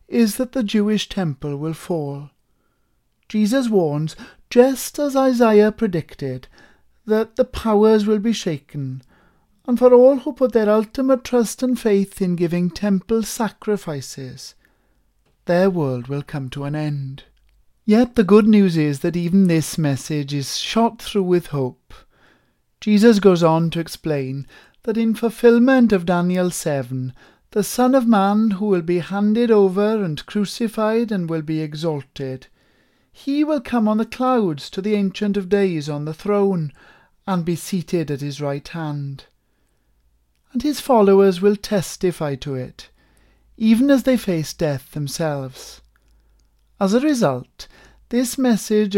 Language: English